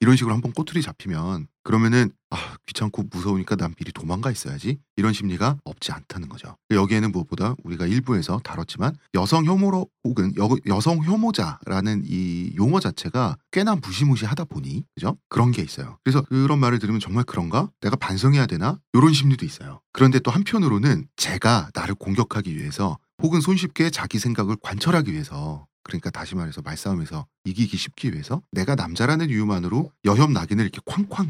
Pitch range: 105-155 Hz